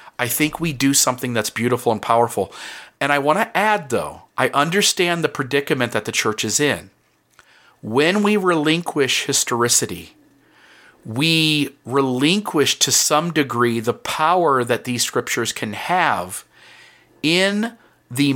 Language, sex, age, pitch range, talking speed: English, male, 40-59, 120-150 Hz, 135 wpm